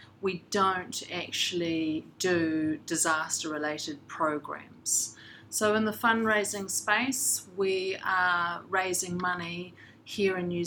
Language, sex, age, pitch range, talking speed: English, female, 40-59, 150-175 Hz, 105 wpm